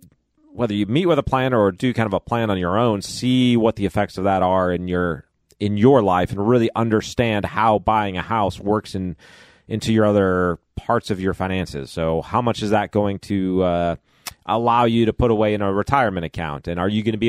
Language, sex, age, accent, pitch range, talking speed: English, male, 30-49, American, 90-115 Hz, 230 wpm